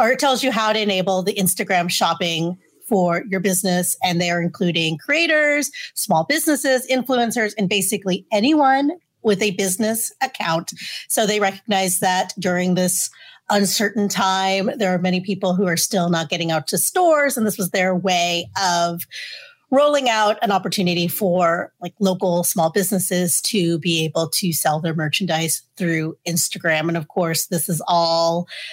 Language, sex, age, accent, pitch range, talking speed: English, female, 30-49, American, 175-225 Hz, 165 wpm